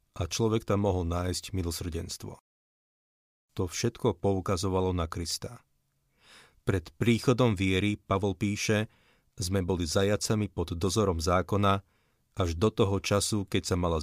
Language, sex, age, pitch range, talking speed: Slovak, male, 30-49, 90-105 Hz, 125 wpm